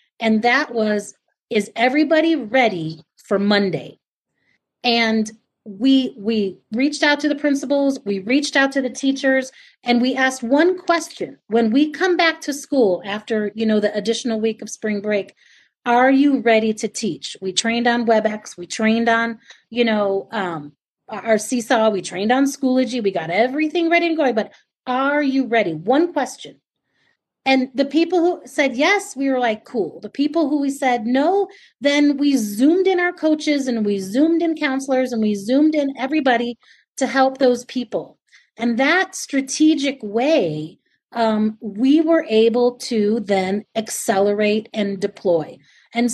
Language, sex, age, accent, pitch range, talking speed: English, female, 30-49, American, 220-285 Hz, 165 wpm